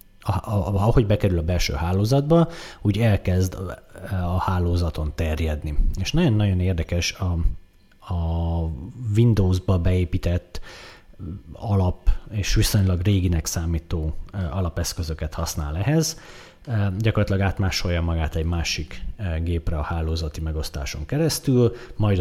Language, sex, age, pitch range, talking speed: Hungarian, male, 30-49, 80-100 Hz, 95 wpm